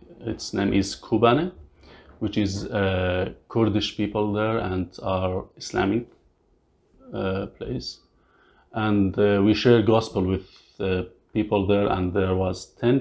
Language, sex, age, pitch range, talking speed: English, male, 30-49, 95-110 Hz, 130 wpm